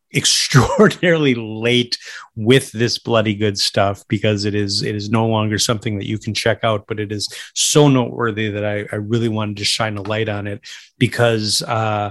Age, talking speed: 30-49, 190 wpm